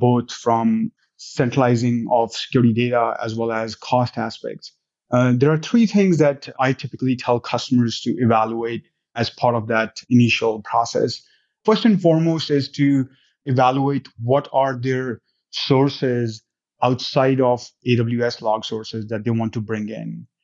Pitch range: 115-130 Hz